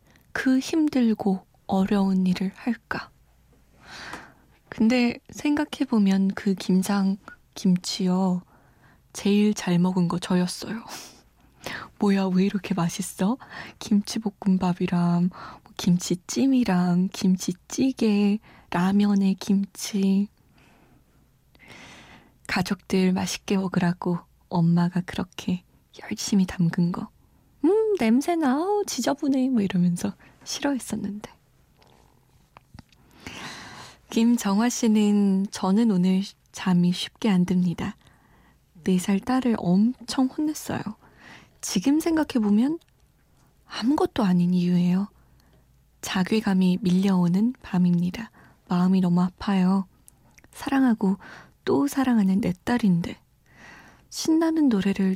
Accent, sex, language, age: native, female, Korean, 20-39